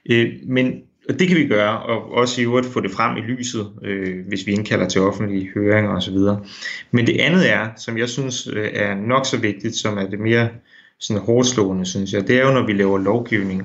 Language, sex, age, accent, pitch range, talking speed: Danish, male, 30-49, native, 105-125 Hz, 215 wpm